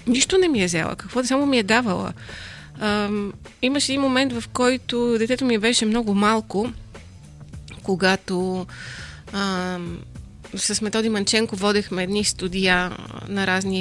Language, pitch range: Bulgarian, 175-215 Hz